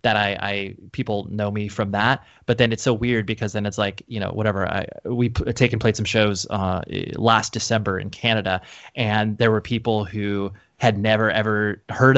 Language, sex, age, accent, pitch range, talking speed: English, male, 20-39, American, 105-130 Hz, 200 wpm